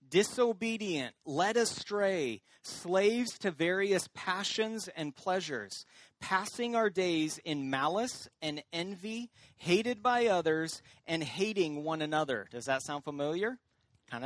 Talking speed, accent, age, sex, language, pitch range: 120 wpm, American, 30-49, male, English, 150-225 Hz